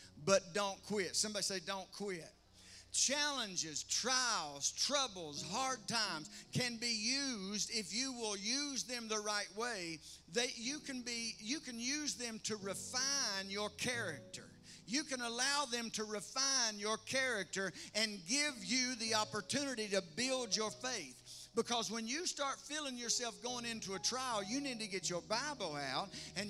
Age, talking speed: 50-69, 160 wpm